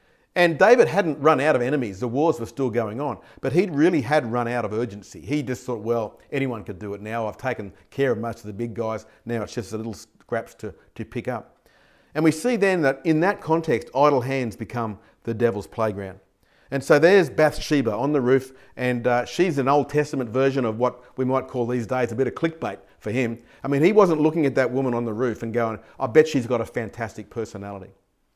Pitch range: 115-145 Hz